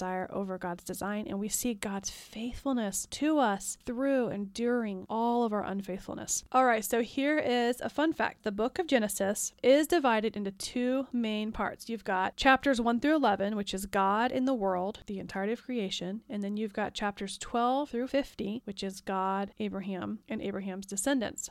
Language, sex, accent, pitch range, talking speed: English, female, American, 195-245 Hz, 185 wpm